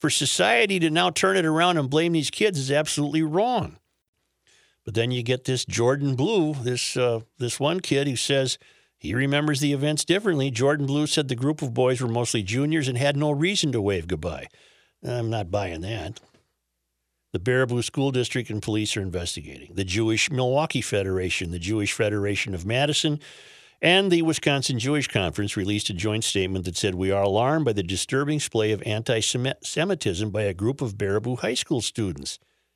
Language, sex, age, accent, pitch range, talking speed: English, male, 50-69, American, 105-145 Hz, 185 wpm